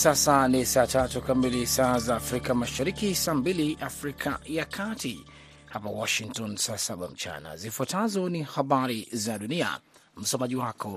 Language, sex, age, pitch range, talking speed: Swahili, male, 30-49, 120-155 Hz, 135 wpm